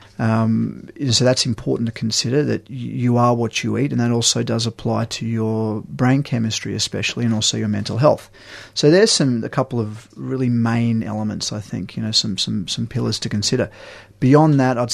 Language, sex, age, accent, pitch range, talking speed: English, male, 30-49, Australian, 110-130 Hz, 195 wpm